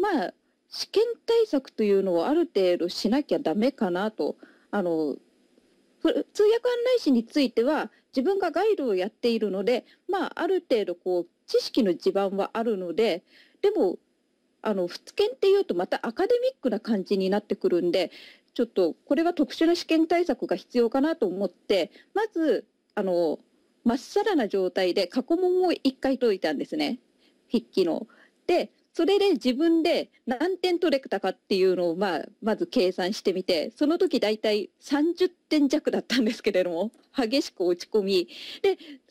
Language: Japanese